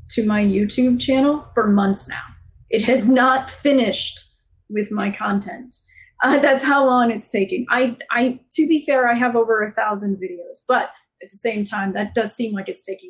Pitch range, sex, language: 205-265 Hz, female, English